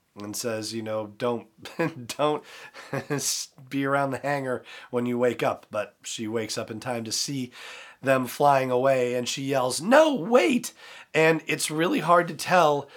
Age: 40-59